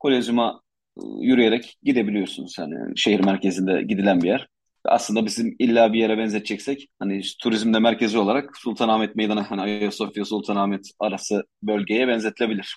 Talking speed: 125 wpm